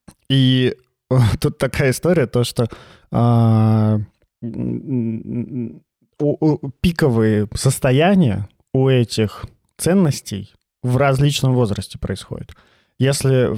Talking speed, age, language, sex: 85 wpm, 20-39, Russian, male